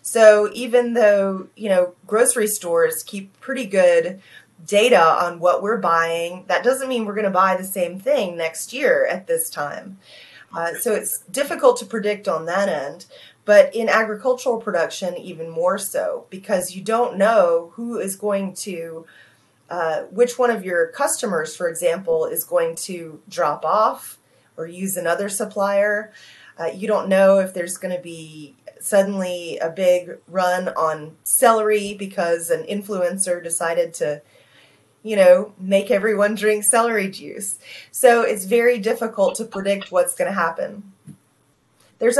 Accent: American